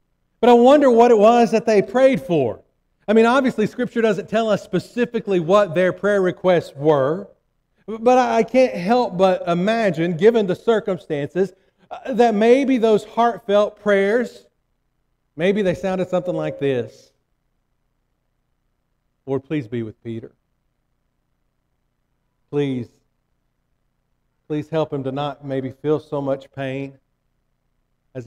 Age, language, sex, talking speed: 50-69, English, male, 125 wpm